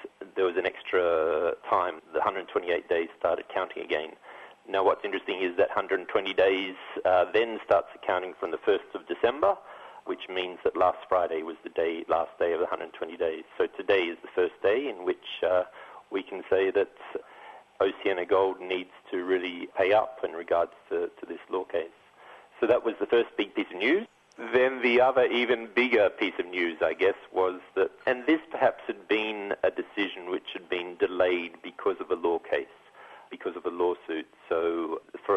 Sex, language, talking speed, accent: male, English, 190 wpm, Australian